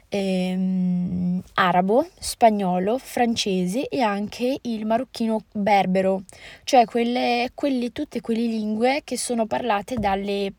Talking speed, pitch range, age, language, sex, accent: 110 wpm, 185-225 Hz, 20-39, Italian, female, native